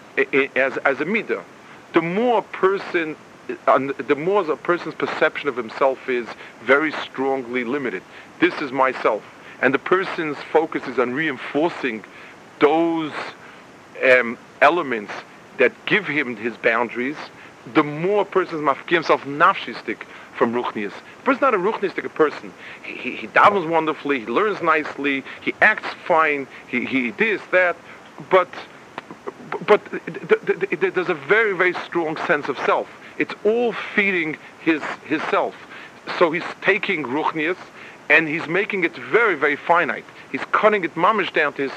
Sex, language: male, English